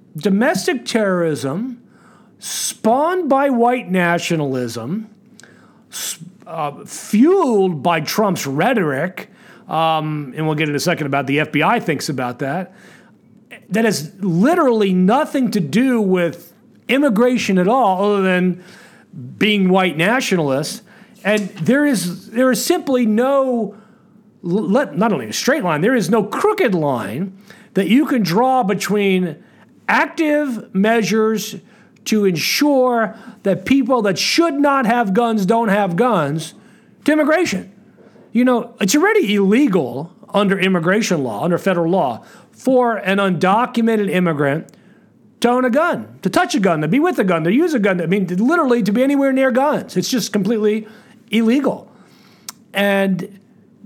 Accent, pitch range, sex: American, 185-245 Hz, male